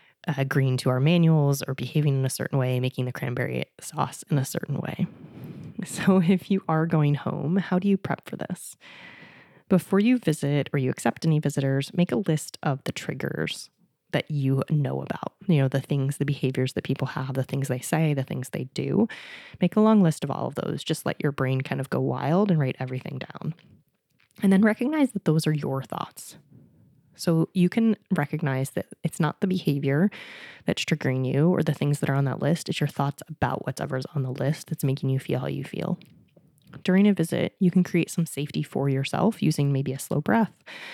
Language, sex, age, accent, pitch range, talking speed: English, female, 20-39, American, 135-175 Hz, 210 wpm